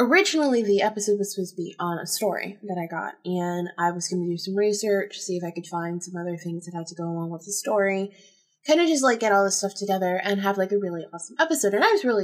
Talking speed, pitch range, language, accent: 280 wpm, 175-215 Hz, English, American